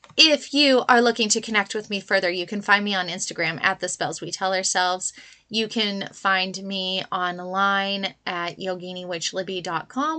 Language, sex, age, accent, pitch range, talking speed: English, female, 20-39, American, 185-225 Hz, 165 wpm